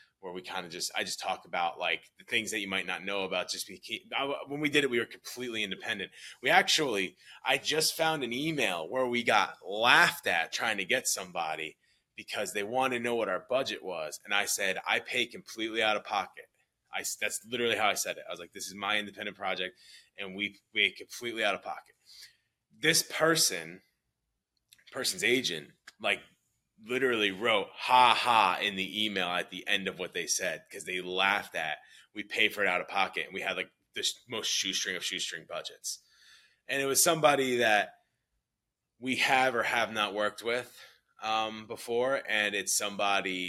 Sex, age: male, 20-39